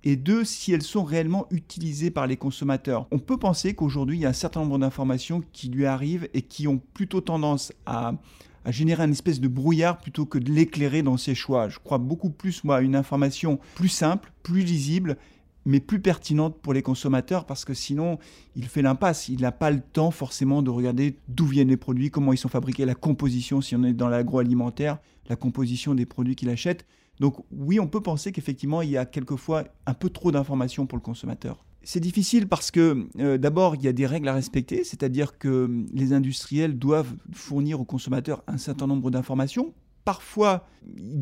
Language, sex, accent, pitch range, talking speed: French, male, French, 135-175 Hz, 205 wpm